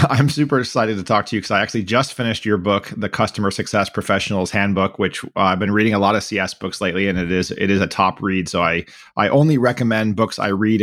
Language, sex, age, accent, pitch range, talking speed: English, male, 30-49, American, 95-110 Hz, 255 wpm